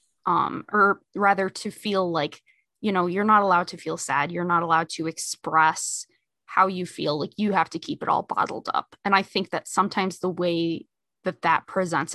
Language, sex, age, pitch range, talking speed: English, female, 20-39, 170-210 Hz, 205 wpm